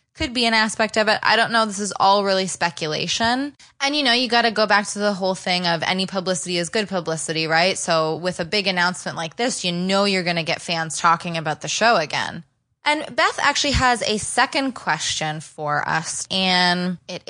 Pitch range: 165-220 Hz